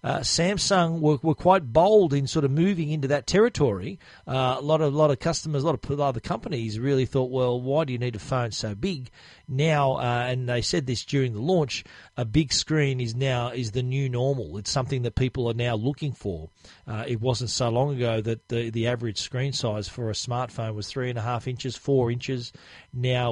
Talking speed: 220 wpm